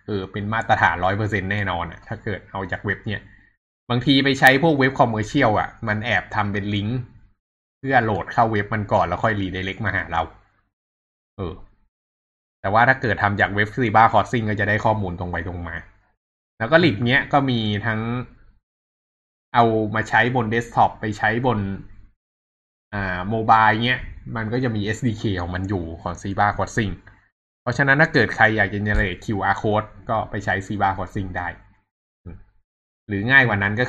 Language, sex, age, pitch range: Thai, male, 20-39, 95-115 Hz